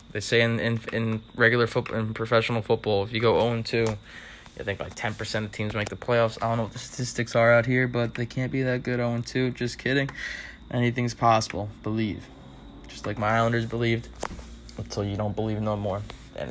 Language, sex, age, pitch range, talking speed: English, male, 20-39, 105-120 Hz, 205 wpm